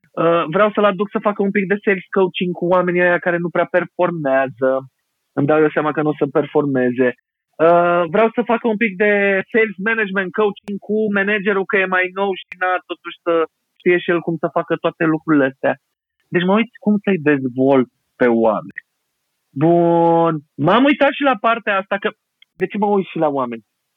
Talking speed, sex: 200 wpm, male